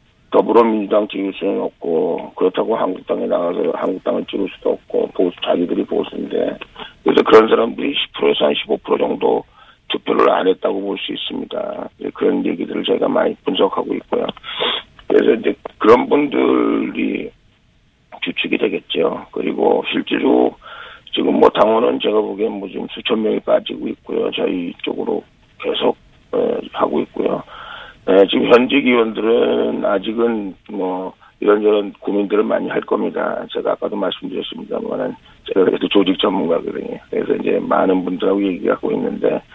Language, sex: Korean, male